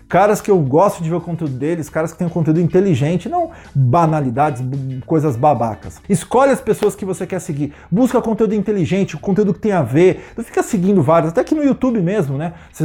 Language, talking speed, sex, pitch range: Portuguese, 220 wpm, male, 160-215 Hz